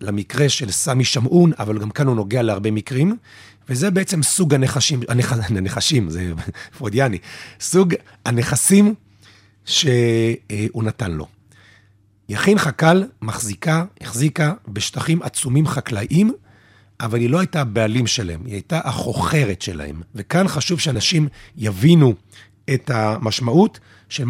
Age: 40-59